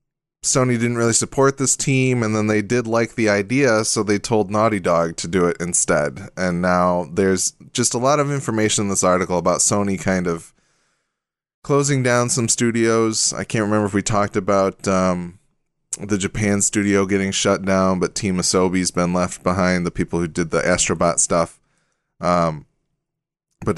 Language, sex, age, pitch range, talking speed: English, male, 20-39, 90-115 Hz, 175 wpm